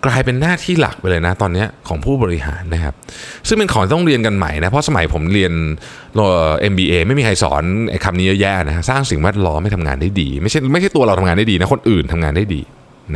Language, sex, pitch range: Thai, male, 95-145 Hz